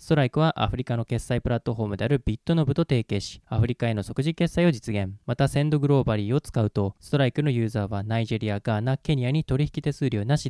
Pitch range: 115-150 Hz